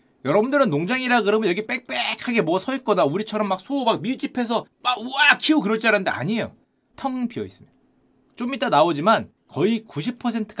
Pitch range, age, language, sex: 170-230 Hz, 30-49, Korean, male